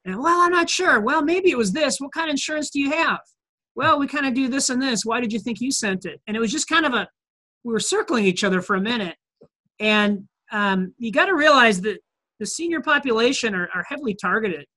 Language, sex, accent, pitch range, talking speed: English, male, American, 185-265 Hz, 250 wpm